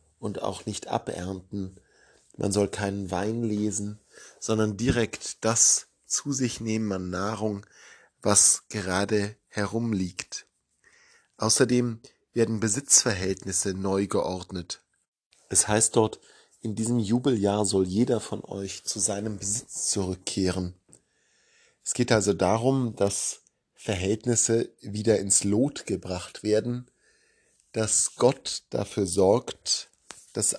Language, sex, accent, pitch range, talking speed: German, male, German, 95-115 Hz, 110 wpm